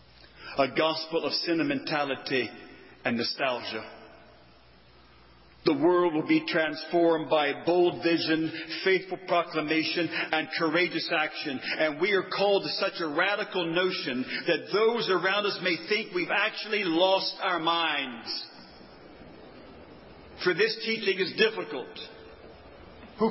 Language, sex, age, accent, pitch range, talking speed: English, male, 50-69, American, 155-195 Hz, 115 wpm